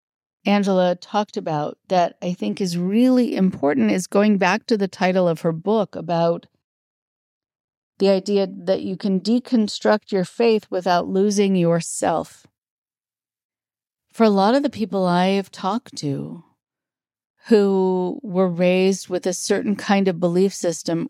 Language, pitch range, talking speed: English, 170-205 Hz, 140 wpm